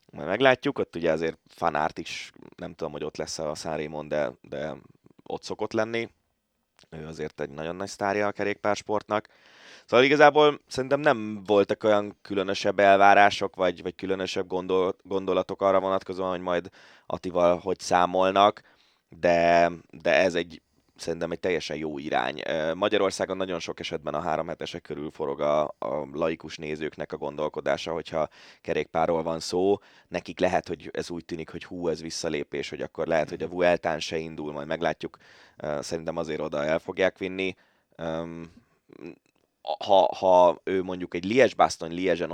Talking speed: 150 wpm